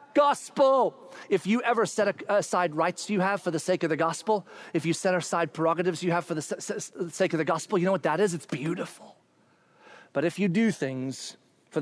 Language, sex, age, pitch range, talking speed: English, male, 30-49, 140-175 Hz, 210 wpm